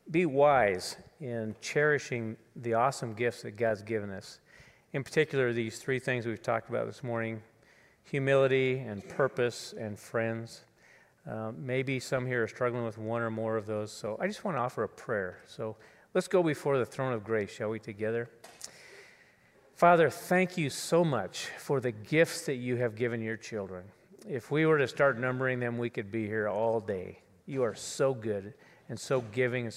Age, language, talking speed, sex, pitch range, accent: 40-59, English, 185 wpm, male, 110-135 Hz, American